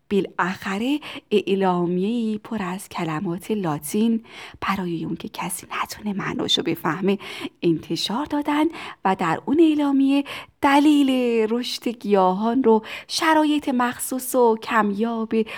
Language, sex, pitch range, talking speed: Persian, female, 190-250 Hz, 105 wpm